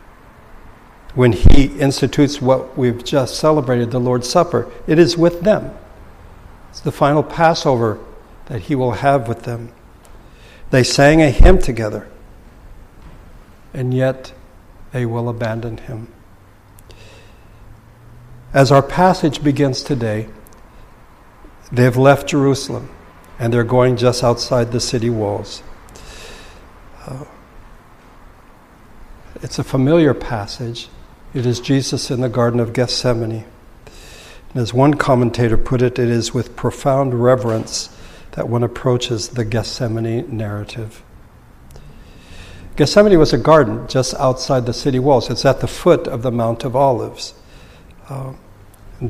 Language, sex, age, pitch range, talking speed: English, male, 60-79, 110-135 Hz, 120 wpm